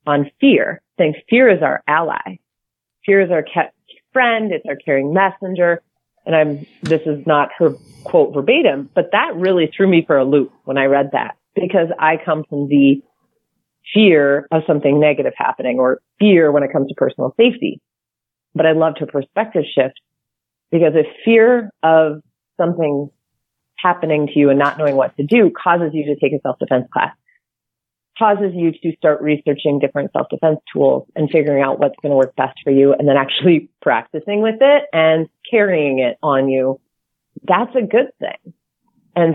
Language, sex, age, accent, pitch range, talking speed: English, female, 30-49, American, 140-175 Hz, 175 wpm